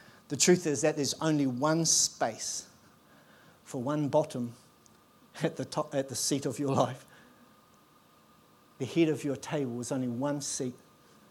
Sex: male